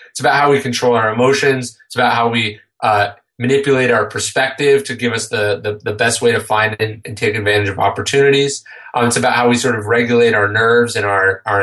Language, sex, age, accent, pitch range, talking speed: English, male, 30-49, American, 110-135 Hz, 225 wpm